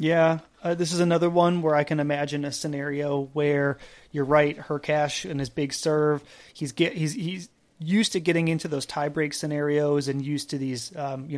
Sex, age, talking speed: male, 30-49, 195 wpm